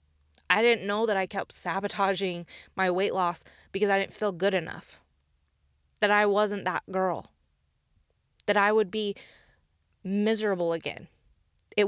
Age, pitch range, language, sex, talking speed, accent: 20-39, 170-210 Hz, English, female, 140 wpm, American